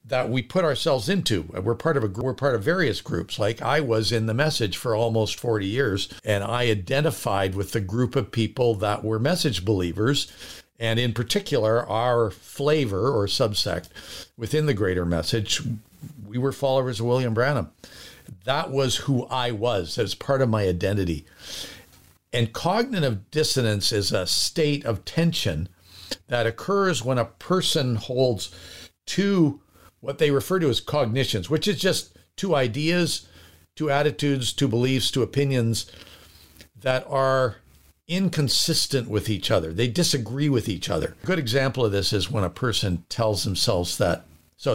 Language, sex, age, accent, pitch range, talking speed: English, male, 50-69, American, 100-140 Hz, 160 wpm